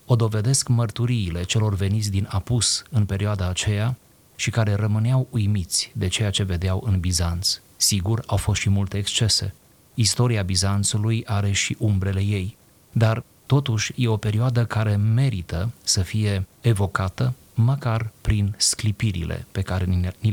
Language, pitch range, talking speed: Romanian, 95-120 Hz, 140 wpm